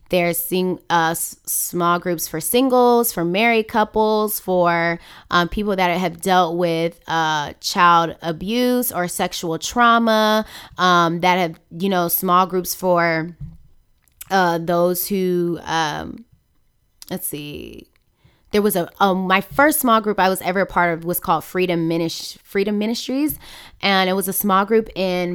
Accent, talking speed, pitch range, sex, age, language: American, 155 wpm, 170-205 Hz, female, 20-39, English